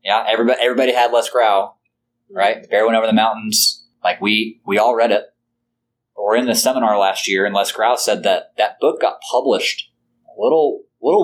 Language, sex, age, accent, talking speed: English, male, 20-39, American, 200 wpm